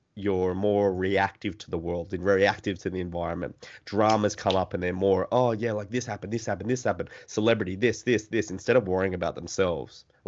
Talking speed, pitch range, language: 215 wpm, 95-110 Hz, English